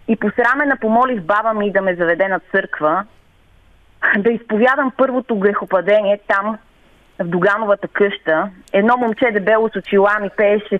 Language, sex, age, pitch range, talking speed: Bulgarian, female, 30-49, 175-215 Hz, 140 wpm